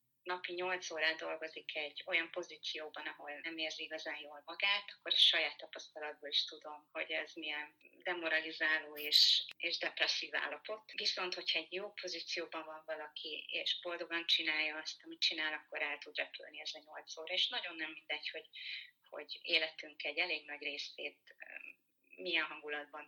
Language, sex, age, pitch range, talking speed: Hungarian, female, 30-49, 150-180 Hz, 160 wpm